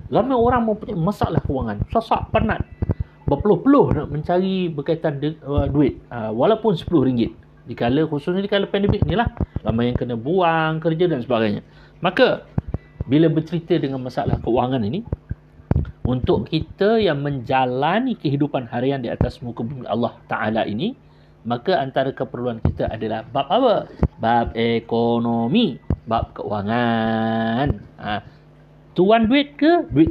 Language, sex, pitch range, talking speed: Malay, male, 120-175 Hz, 125 wpm